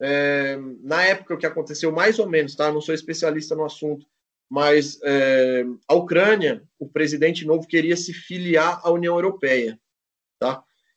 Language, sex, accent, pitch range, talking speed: Portuguese, male, Brazilian, 140-180 Hz, 165 wpm